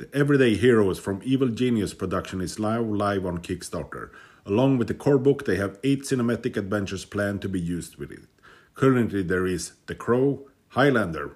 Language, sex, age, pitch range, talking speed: English, male, 50-69, 100-135 Hz, 175 wpm